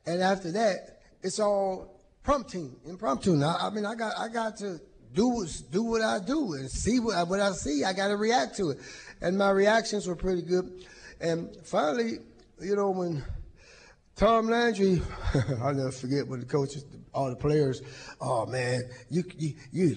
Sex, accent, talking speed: male, American, 180 wpm